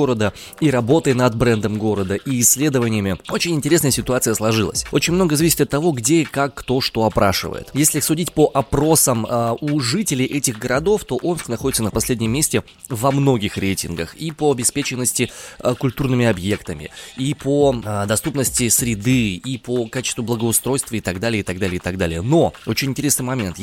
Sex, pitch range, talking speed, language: male, 105-135 Hz, 175 wpm, Russian